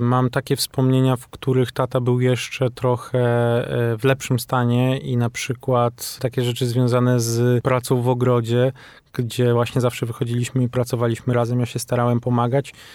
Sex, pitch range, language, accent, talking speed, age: male, 125-145 Hz, Polish, native, 155 wpm, 20-39